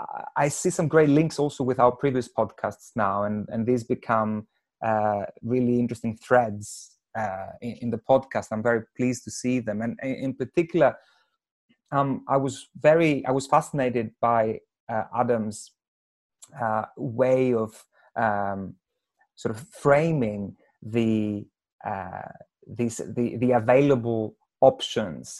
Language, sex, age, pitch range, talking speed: English, male, 30-49, 110-130 Hz, 135 wpm